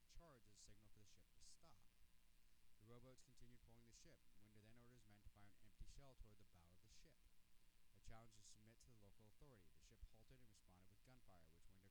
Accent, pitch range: American, 90-115 Hz